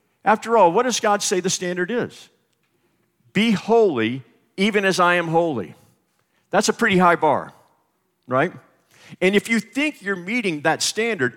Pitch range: 140-190 Hz